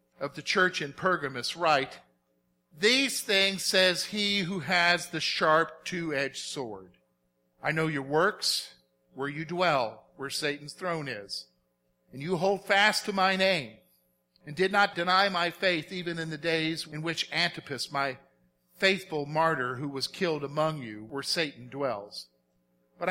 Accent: American